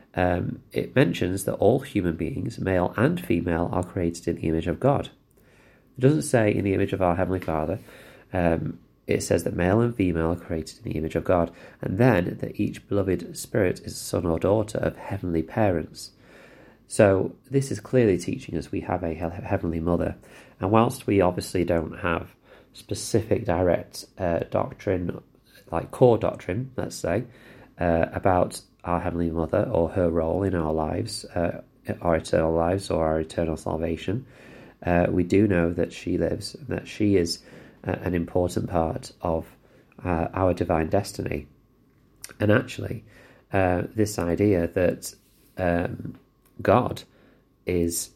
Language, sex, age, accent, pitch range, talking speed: English, male, 30-49, British, 85-100 Hz, 160 wpm